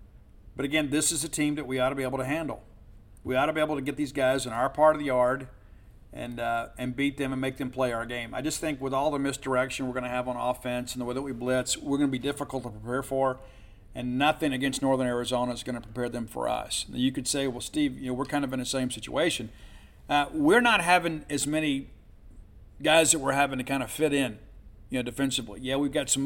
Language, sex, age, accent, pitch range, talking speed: English, male, 50-69, American, 120-140 Hz, 265 wpm